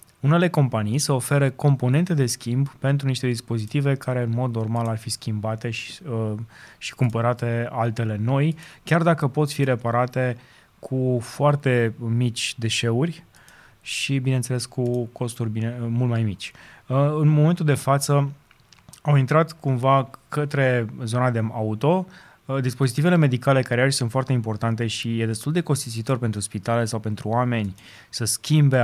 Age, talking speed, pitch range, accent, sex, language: 20-39, 145 wpm, 115-140 Hz, native, male, Romanian